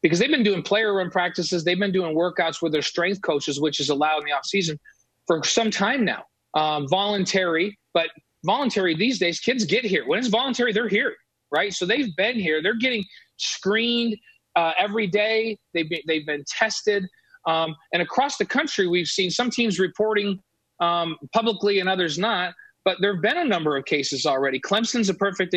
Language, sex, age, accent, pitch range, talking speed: English, male, 30-49, American, 170-215 Hz, 190 wpm